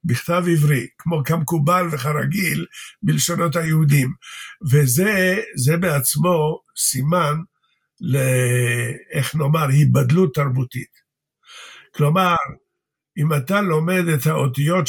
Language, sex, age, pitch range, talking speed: Hebrew, male, 50-69, 145-185 Hz, 80 wpm